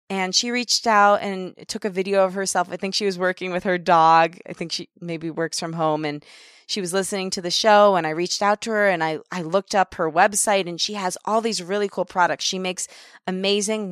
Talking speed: 240 wpm